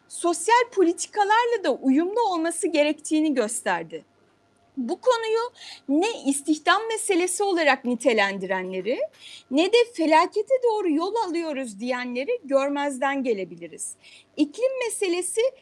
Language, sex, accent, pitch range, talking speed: Turkish, female, native, 265-390 Hz, 95 wpm